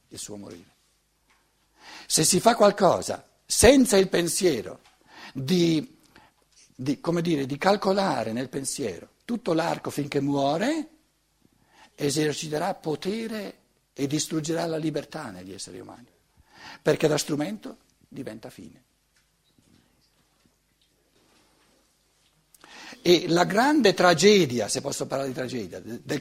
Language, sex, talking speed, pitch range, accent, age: Italian, male, 100 wpm, 125-180 Hz, native, 60-79